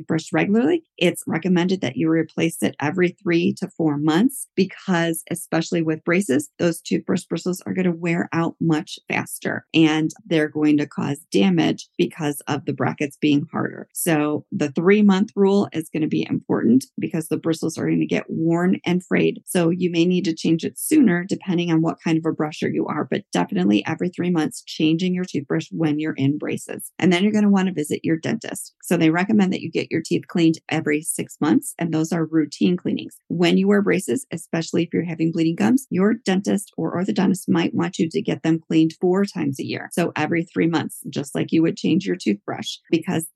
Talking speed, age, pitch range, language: 210 wpm, 40-59, 155-180 Hz, English